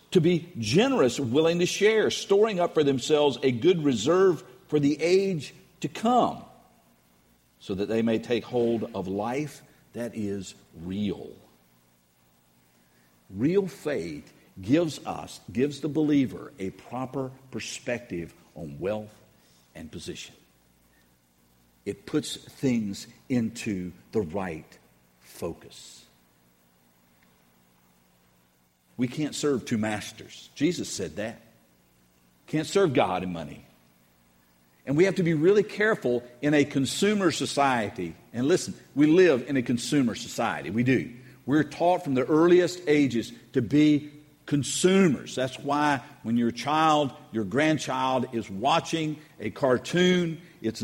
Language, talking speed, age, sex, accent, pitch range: English, 125 wpm, 50-69, male, American, 100-155 Hz